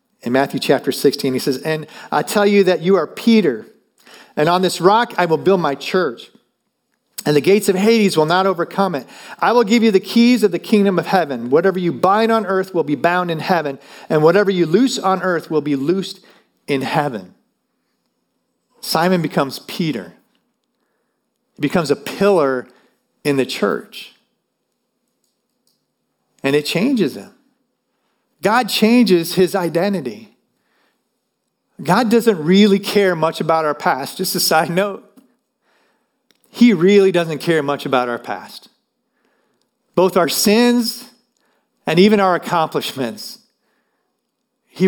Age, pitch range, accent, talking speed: 40-59, 160-220 Hz, American, 145 wpm